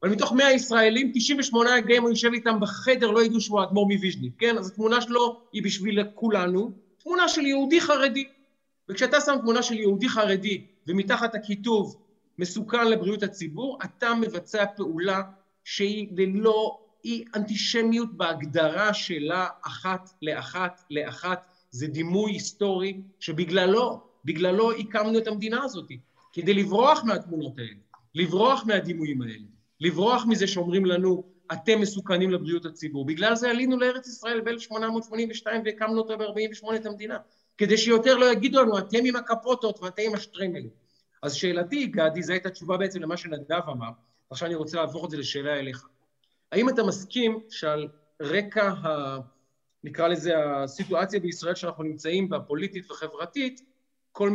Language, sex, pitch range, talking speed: Hebrew, male, 170-225 Hz, 140 wpm